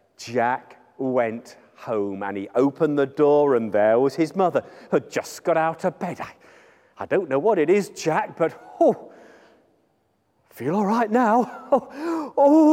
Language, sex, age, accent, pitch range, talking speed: English, male, 40-59, British, 135-205 Hz, 170 wpm